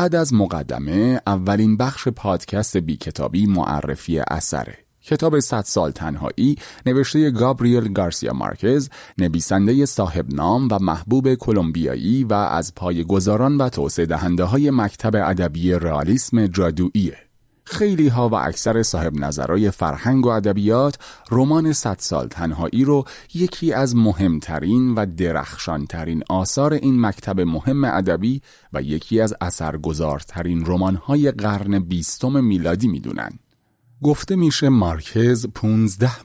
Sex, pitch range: male, 90-125 Hz